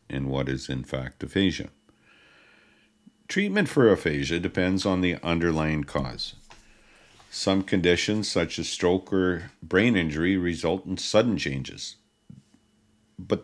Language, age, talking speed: English, 50-69, 120 wpm